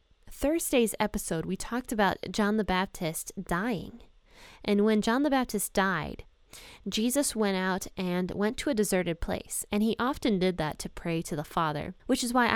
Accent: American